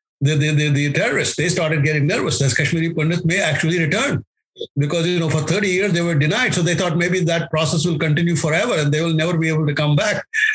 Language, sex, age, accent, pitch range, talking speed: English, male, 60-79, Indian, 135-170 Hz, 235 wpm